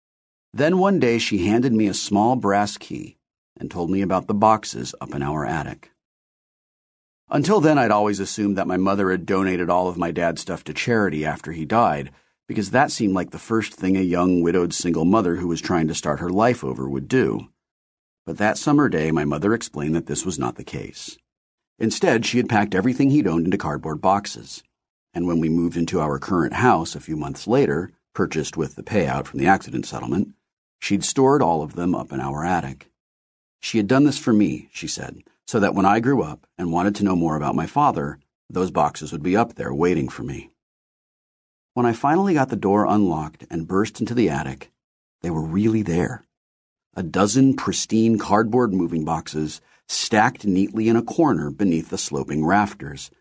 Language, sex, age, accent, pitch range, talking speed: English, male, 40-59, American, 80-110 Hz, 200 wpm